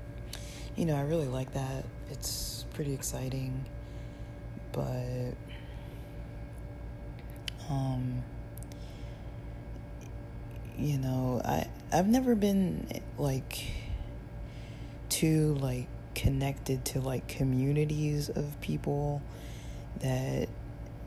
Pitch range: 120-140 Hz